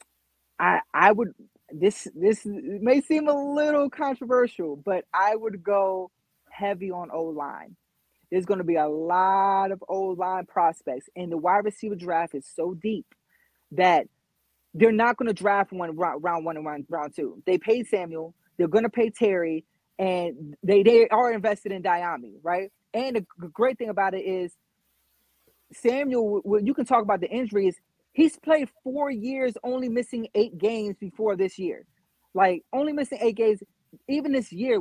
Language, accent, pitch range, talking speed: English, American, 180-235 Hz, 165 wpm